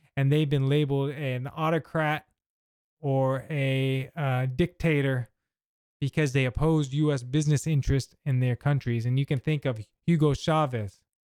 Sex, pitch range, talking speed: male, 135-175 Hz, 135 wpm